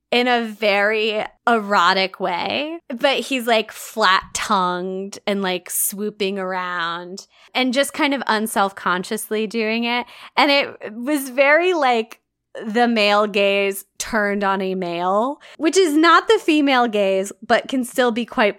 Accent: American